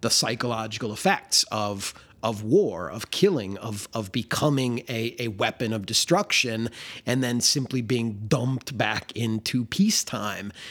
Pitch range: 110-135 Hz